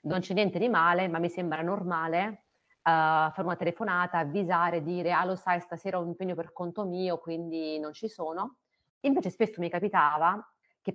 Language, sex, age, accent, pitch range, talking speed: Italian, female, 30-49, native, 160-190 Hz, 180 wpm